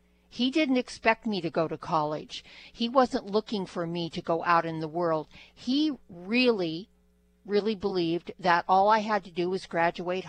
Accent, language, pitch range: American, English, 165-210 Hz